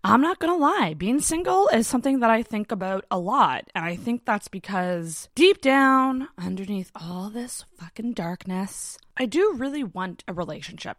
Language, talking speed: English, 175 wpm